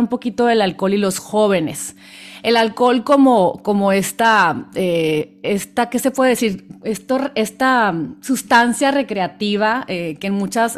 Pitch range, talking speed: 185-225 Hz, 145 wpm